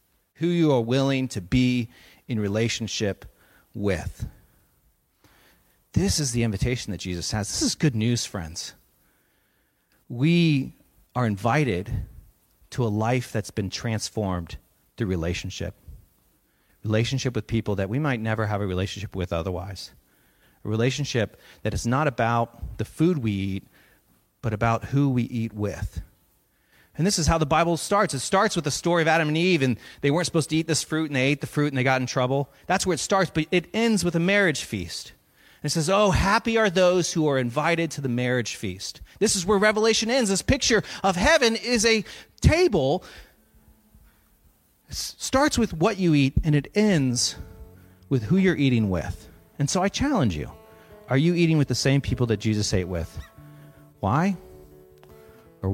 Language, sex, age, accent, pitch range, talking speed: English, male, 40-59, American, 100-165 Hz, 175 wpm